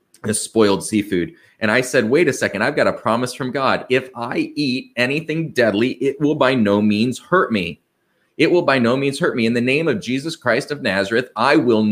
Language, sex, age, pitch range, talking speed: English, male, 30-49, 110-140 Hz, 220 wpm